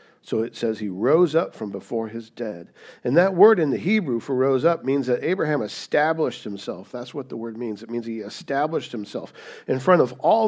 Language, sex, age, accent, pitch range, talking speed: English, male, 50-69, American, 110-180 Hz, 220 wpm